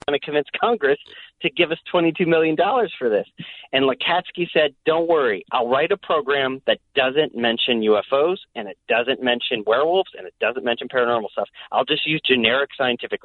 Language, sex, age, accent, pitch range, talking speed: English, male, 40-59, American, 135-180 Hz, 175 wpm